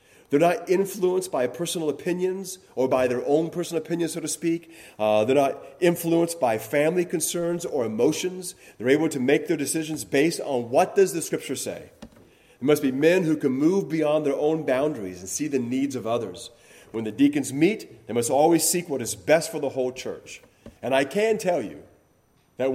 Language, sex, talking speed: English, male, 200 wpm